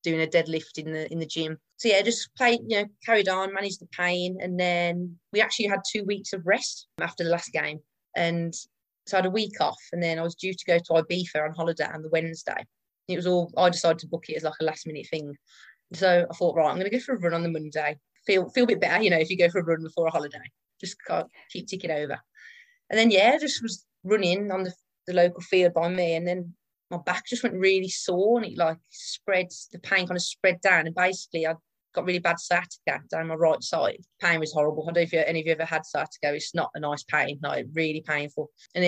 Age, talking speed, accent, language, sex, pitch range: 30-49, 255 wpm, British, English, female, 160-185 Hz